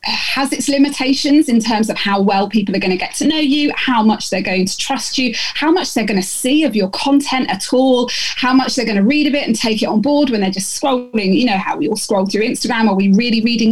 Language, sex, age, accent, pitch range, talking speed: English, female, 20-39, British, 200-265 Hz, 275 wpm